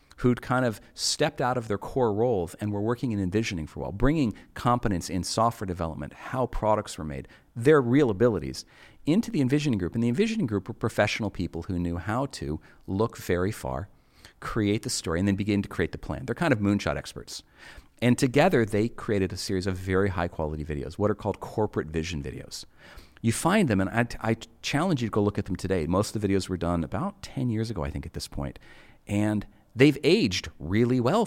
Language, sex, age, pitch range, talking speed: German, male, 40-59, 90-120 Hz, 215 wpm